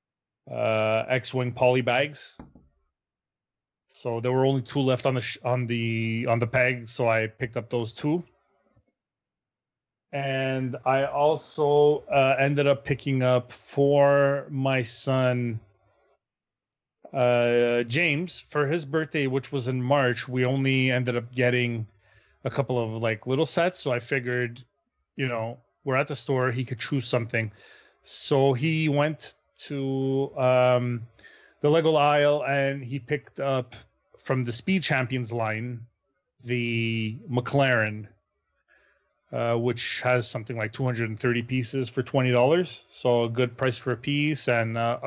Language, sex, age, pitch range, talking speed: English, male, 30-49, 120-140 Hz, 140 wpm